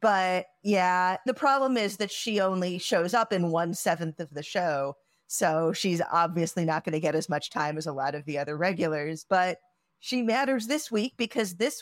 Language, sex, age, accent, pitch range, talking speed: English, female, 40-59, American, 170-205 Hz, 205 wpm